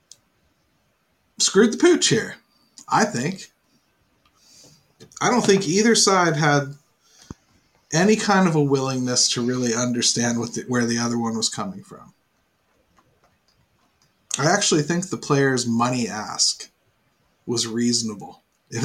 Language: English